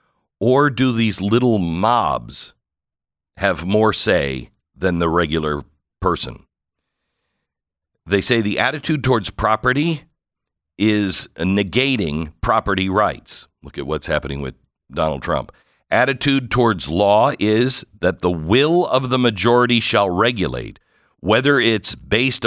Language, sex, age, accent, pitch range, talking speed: English, male, 50-69, American, 85-120 Hz, 120 wpm